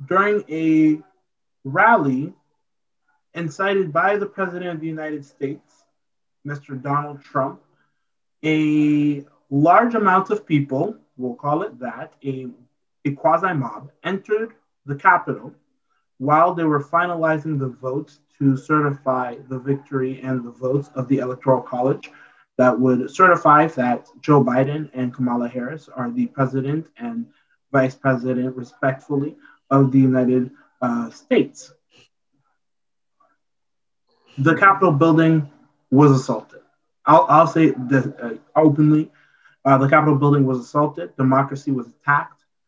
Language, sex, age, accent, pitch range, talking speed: English, male, 20-39, American, 135-160 Hz, 120 wpm